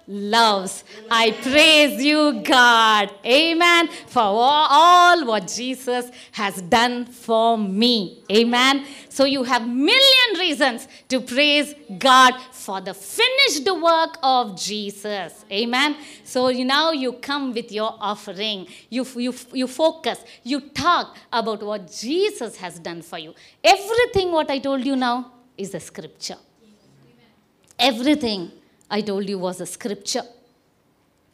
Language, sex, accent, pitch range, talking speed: English, female, Indian, 210-300 Hz, 130 wpm